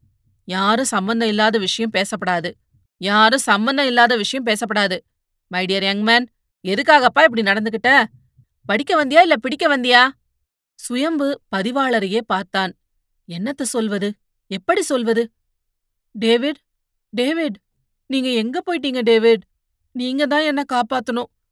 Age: 30-49